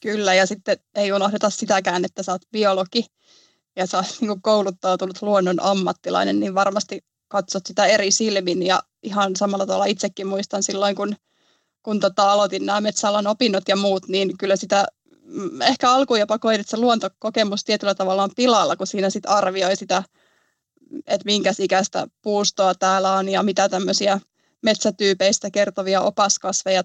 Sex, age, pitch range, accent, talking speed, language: female, 20-39, 195-215 Hz, native, 155 wpm, Finnish